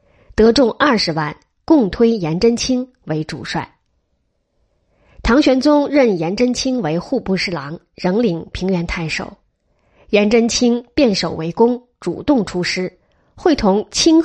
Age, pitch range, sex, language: 20-39, 165-245 Hz, female, Chinese